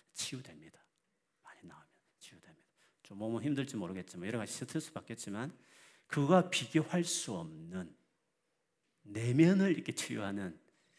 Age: 40-59